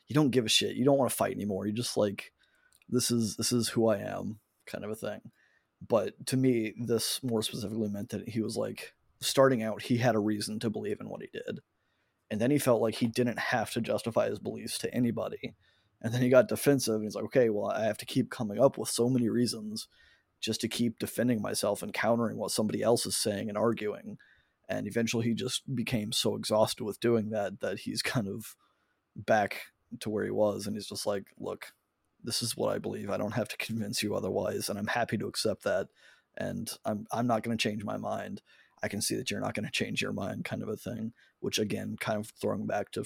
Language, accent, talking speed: English, American, 235 wpm